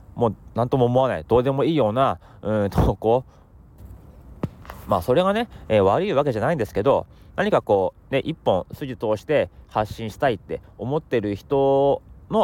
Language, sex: Japanese, male